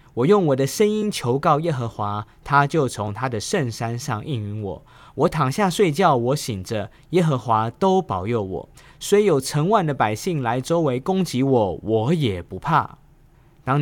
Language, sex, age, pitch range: Chinese, male, 20-39, 115-155 Hz